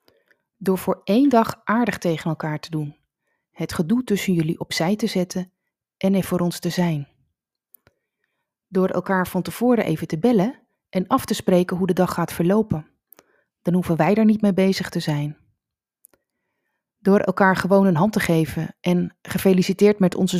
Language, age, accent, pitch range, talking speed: Dutch, 30-49, Dutch, 170-205 Hz, 170 wpm